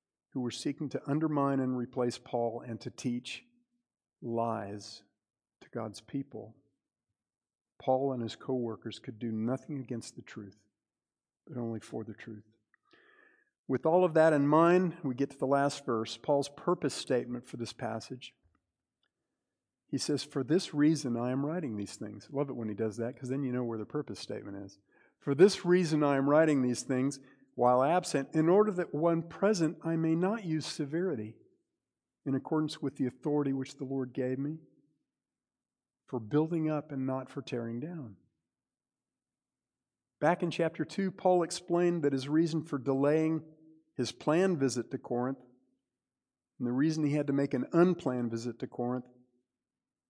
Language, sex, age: English, male, 50-69